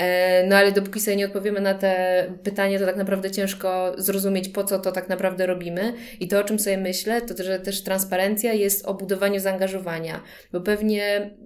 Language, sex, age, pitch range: Polish, female, 20-39, 185-210 Hz